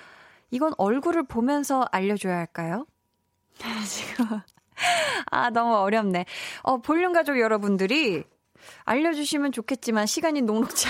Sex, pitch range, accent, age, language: female, 190-285 Hz, native, 20-39, Korean